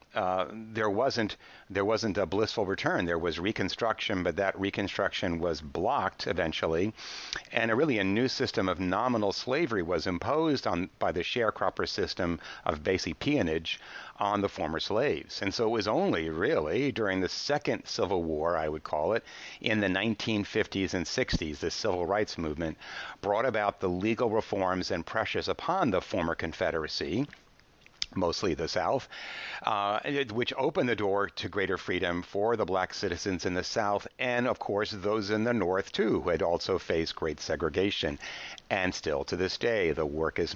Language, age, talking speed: English, 60-79, 170 wpm